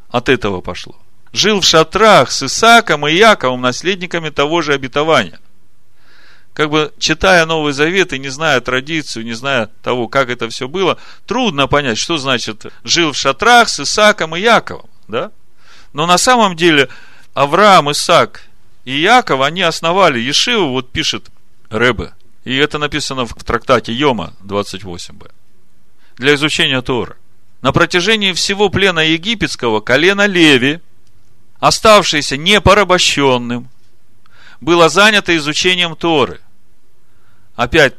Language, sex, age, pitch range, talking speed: Russian, male, 40-59, 115-170 Hz, 125 wpm